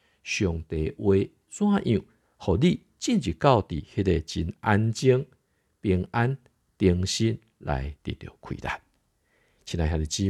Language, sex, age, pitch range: Chinese, male, 50-69, 85-120 Hz